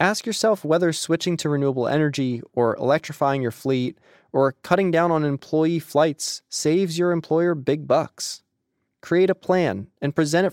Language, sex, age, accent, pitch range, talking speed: English, male, 20-39, American, 130-165 Hz, 160 wpm